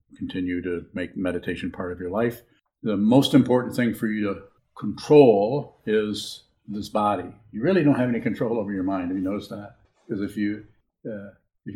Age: 50-69